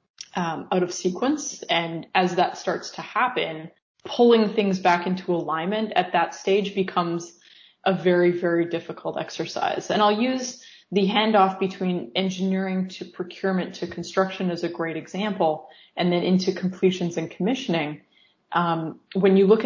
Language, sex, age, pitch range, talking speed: English, female, 20-39, 170-200 Hz, 150 wpm